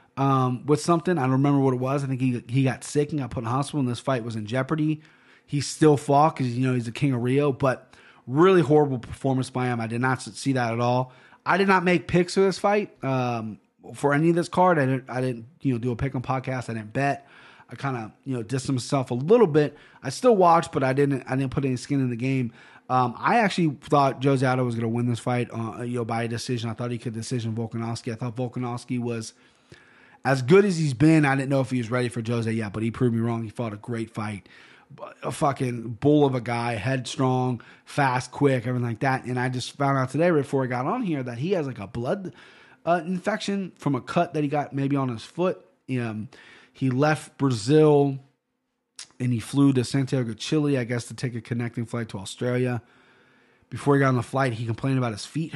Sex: male